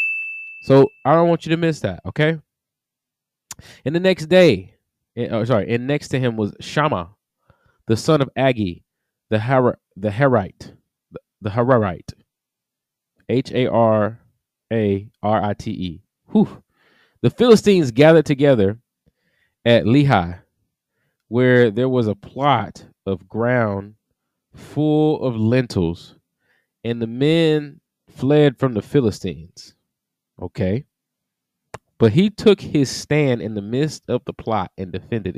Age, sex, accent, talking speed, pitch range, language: 20-39, male, American, 120 wpm, 105-155 Hz, English